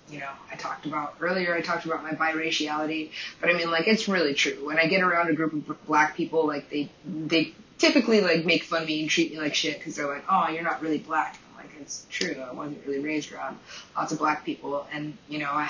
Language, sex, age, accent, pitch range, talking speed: English, female, 20-39, American, 145-165 Hz, 250 wpm